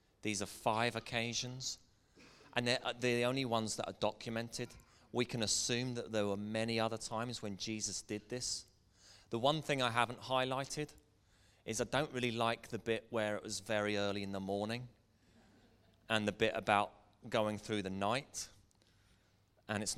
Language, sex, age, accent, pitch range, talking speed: English, male, 30-49, British, 100-120 Hz, 170 wpm